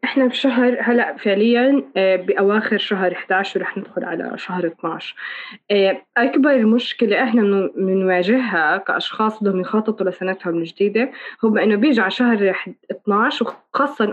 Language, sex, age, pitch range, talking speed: Arabic, female, 20-39, 195-255 Hz, 125 wpm